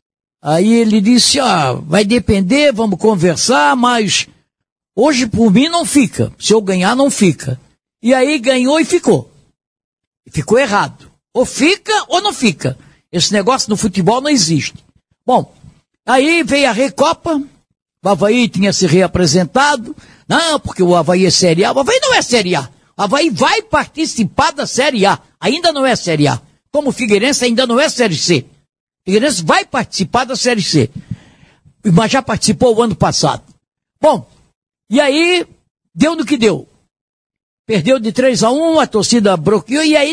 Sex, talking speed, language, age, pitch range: male, 160 wpm, Portuguese, 60-79, 185-275 Hz